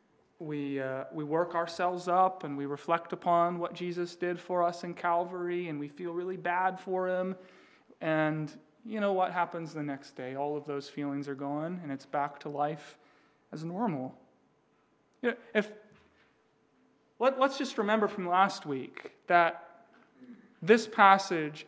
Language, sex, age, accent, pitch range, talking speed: English, male, 30-49, American, 155-195 Hz, 160 wpm